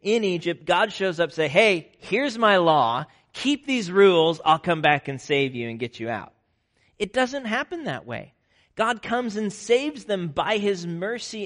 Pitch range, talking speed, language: 130-215 Hz, 195 wpm, English